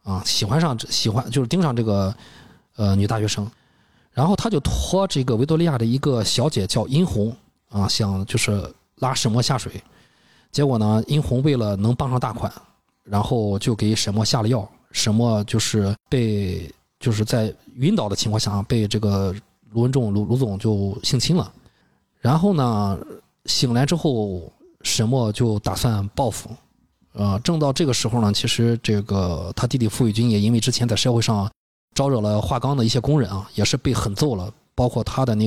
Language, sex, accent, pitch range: Chinese, male, native, 105-130 Hz